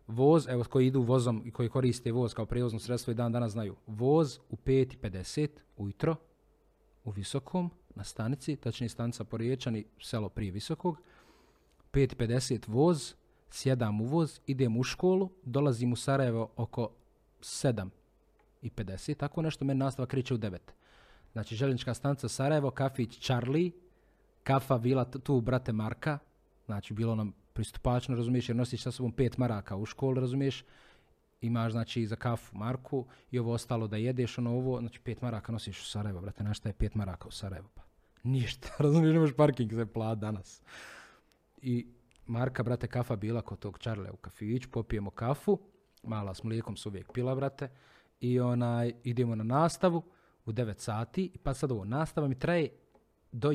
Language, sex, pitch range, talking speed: Croatian, male, 110-135 Hz, 155 wpm